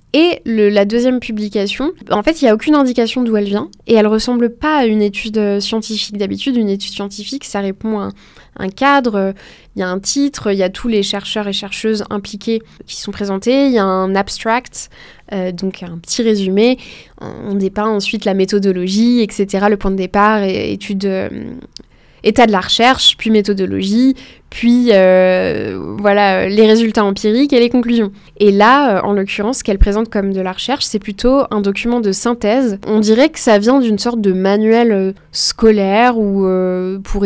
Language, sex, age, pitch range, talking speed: French, female, 20-39, 200-235 Hz, 185 wpm